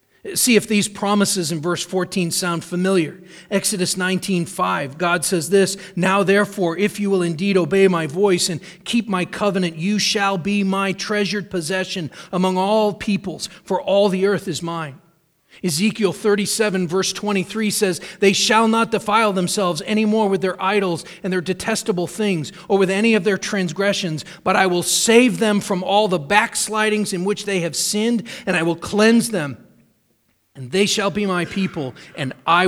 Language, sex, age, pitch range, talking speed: English, male, 40-59, 180-210 Hz, 175 wpm